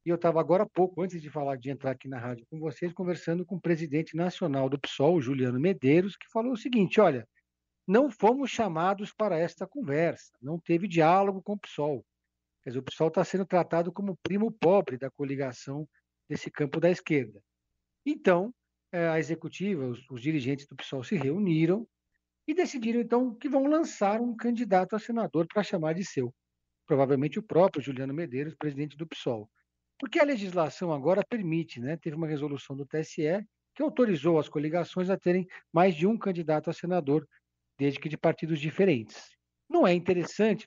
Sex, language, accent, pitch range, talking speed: male, Portuguese, Brazilian, 140-195 Hz, 175 wpm